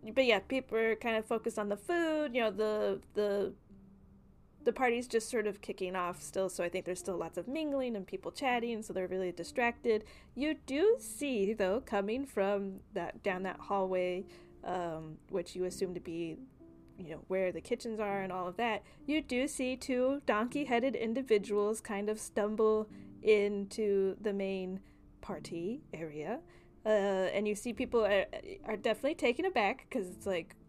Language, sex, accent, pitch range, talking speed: English, female, American, 190-245 Hz, 180 wpm